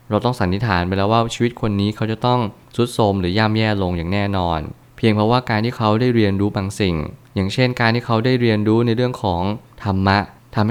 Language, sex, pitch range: Thai, male, 95-115 Hz